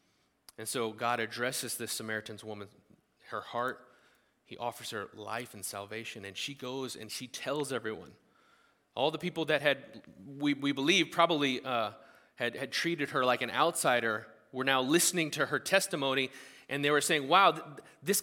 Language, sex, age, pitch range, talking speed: English, male, 30-49, 130-175 Hz, 170 wpm